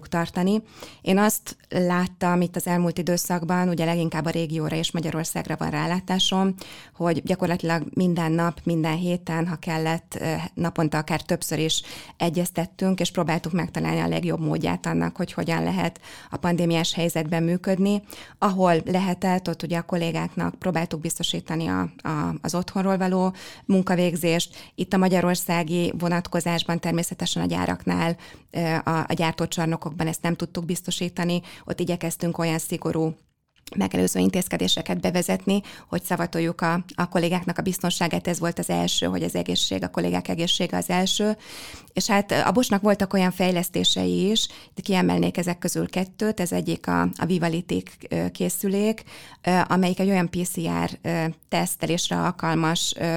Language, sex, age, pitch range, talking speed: Hungarian, female, 20-39, 160-180 Hz, 135 wpm